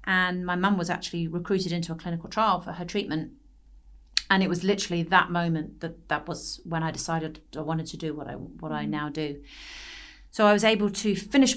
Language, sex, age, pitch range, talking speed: English, female, 40-59, 170-190 Hz, 205 wpm